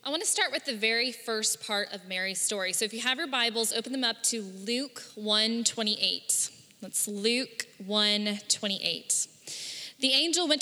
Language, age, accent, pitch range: English, 10-29, American, 210-260 Hz